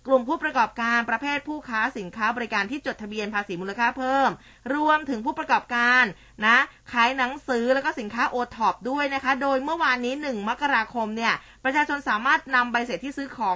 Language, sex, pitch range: Thai, female, 210-265 Hz